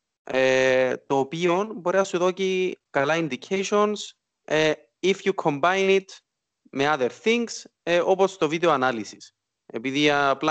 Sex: male